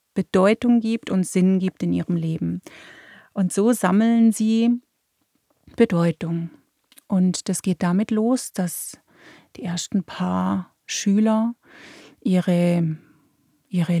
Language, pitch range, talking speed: German, 175-225 Hz, 105 wpm